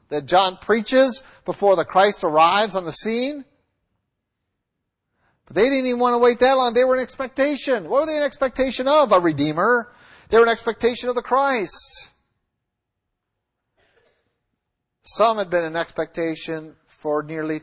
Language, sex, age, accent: English, male, 50-69, American